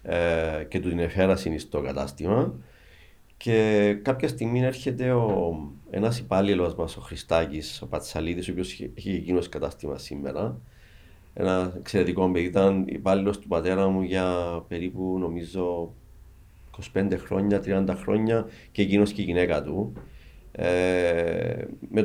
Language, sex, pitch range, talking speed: Greek, male, 80-110 Hz, 135 wpm